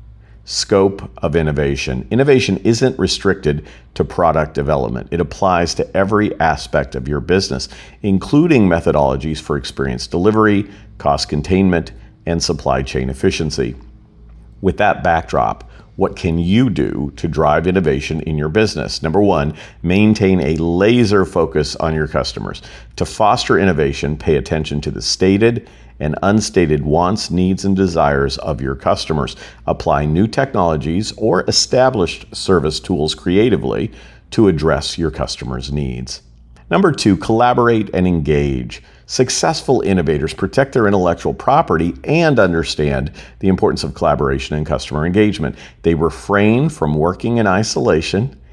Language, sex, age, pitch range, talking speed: English, male, 50-69, 70-105 Hz, 130 wpm